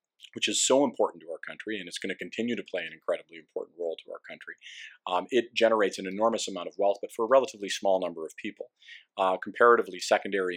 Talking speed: 225 wpm